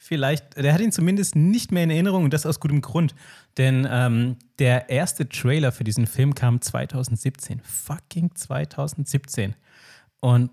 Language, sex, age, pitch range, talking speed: German, male, 30-49, 120-150 Hz, 155 wpm